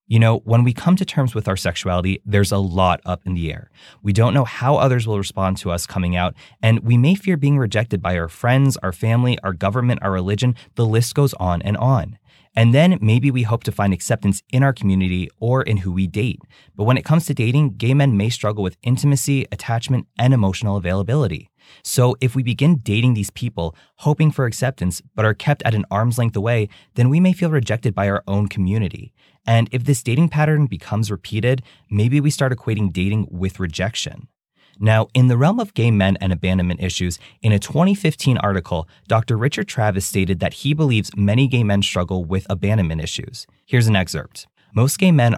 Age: 20-39